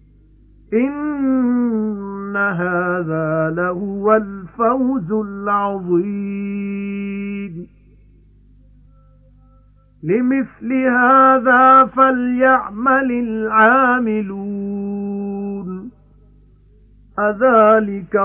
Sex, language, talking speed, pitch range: male, English, 35 wpm, 200-250 Hz